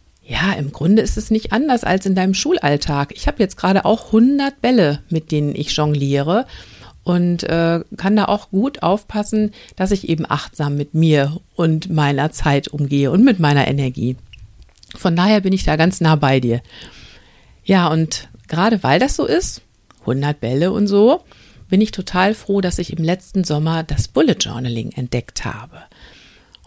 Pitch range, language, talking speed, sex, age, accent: 145-200 Hz, German, 175 wpm, female, 50-69, German